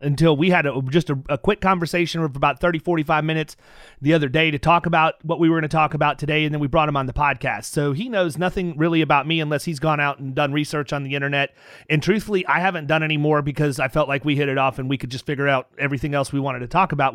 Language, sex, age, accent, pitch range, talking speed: English, male, 30-49, American, 150-205 Hz, 275 wpm